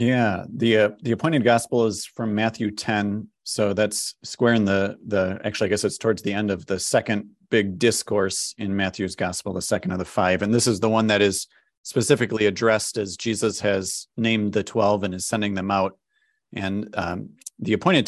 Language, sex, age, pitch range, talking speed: English, male, 40-59, 100-115 Hz, 200 wpm